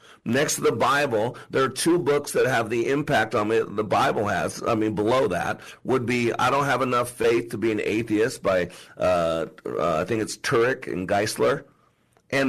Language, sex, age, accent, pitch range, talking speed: English, male, 50-69, American, 120-145 Hz, 200 wpm